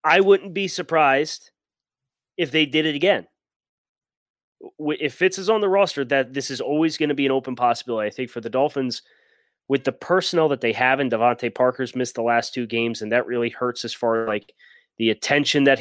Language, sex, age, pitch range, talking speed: English, male, 30-49, 120-150 Hz, 210 wpm